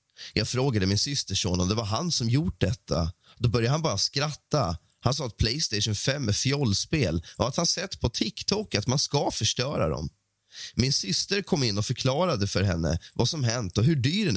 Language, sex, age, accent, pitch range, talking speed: Swedish, male, 20-39, native, 100-145 Hz, 210 wpm